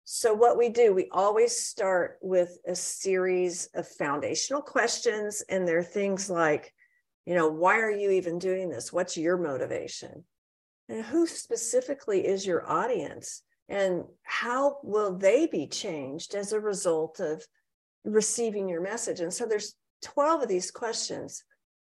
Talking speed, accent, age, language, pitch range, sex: 150 wpm, American, 50-69, English, 175-245 Hz, female